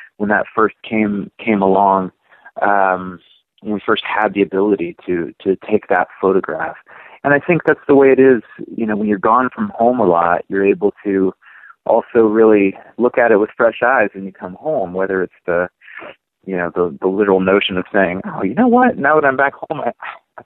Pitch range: 100-145 Hz